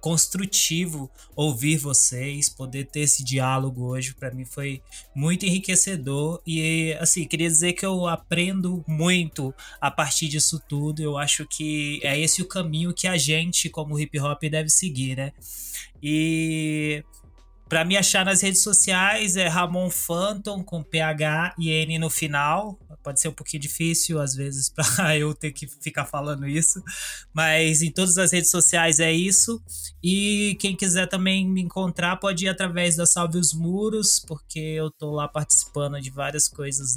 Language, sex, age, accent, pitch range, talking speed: Portuguese, male, 20-39, Brazilian, 140-175 Hz, 160 wpm